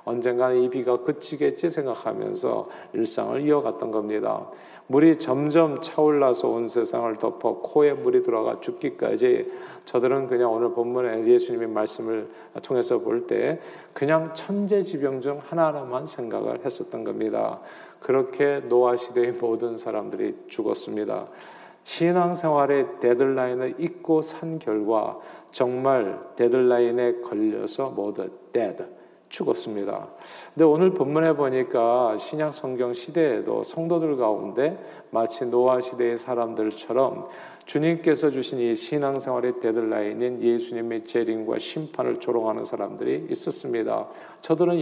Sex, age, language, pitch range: male, 40-59, Korean, 120-170 Hz